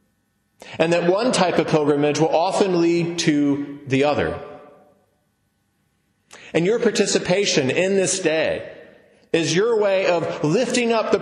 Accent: American